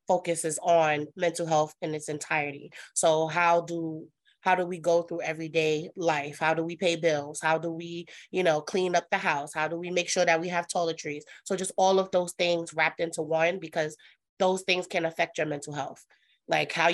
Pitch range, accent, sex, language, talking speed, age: 160-180 Hz, American, female, English, 210 wpm, 30-49